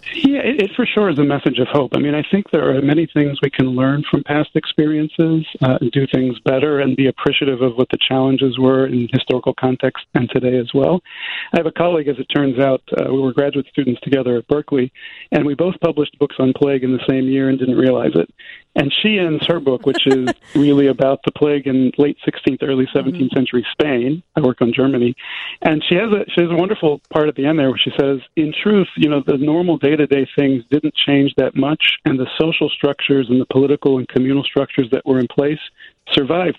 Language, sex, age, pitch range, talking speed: English, male, 40-59, 130-150 Hz, 230 wpm